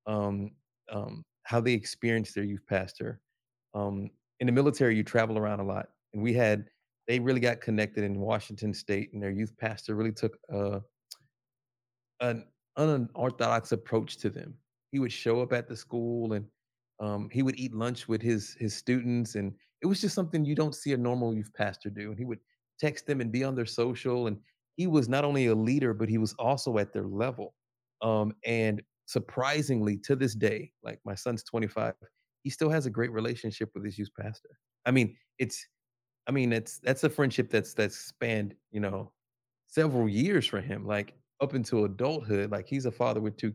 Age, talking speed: 30-49, 195 wpm